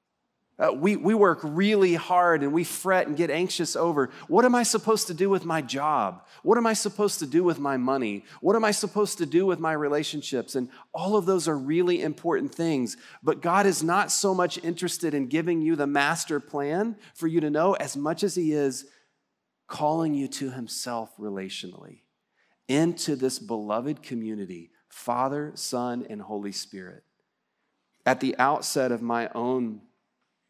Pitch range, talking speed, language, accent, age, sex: 120-175 Hz, 175 wpm, English, American, 40-59, male